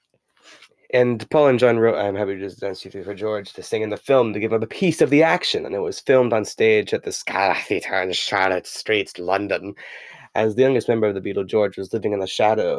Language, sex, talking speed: English, male, 255 wpm